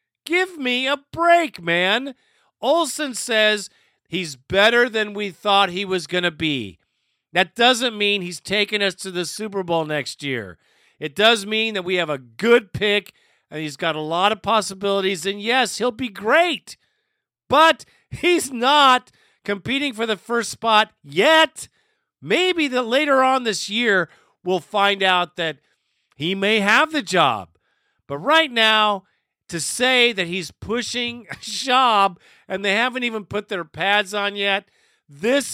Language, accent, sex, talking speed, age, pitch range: English, American, male, 160 wpm, 50-69, 180-240 Hz